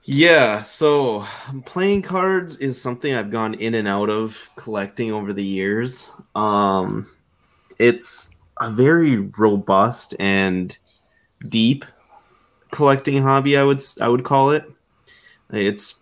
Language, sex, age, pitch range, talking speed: English, male, 20-39, 100-125 Hz, 120 wpm